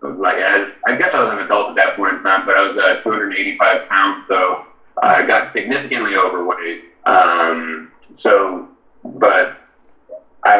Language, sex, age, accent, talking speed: English, male, 40-59, American, 155 wpm